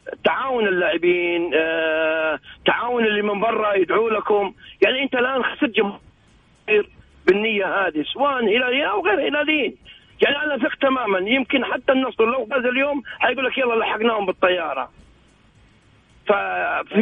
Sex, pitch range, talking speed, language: male, 195-255 Hz, 130 wpm, Arabic